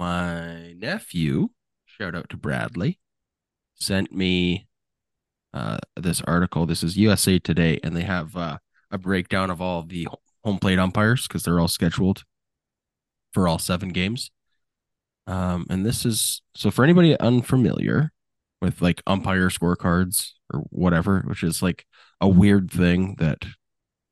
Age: 20-39